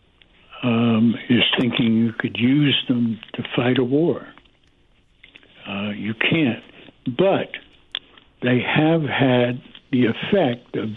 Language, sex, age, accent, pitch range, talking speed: English, male, 60-79, American, 115-140 Hz, 115 wpm